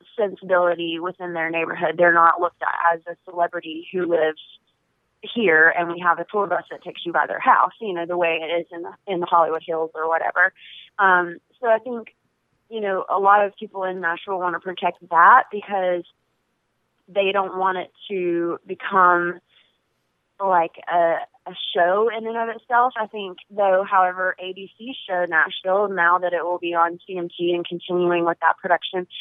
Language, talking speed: English, 185 wpm